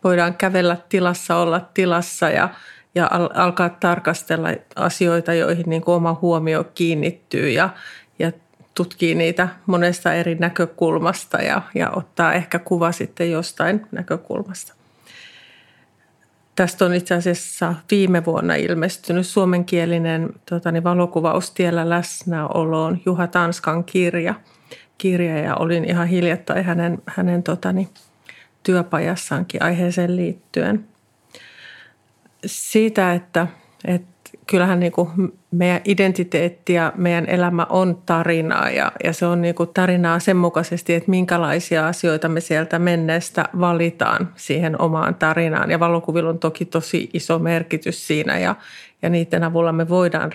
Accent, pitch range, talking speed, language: native, 165-180 Hz, 115 wpm, Finnish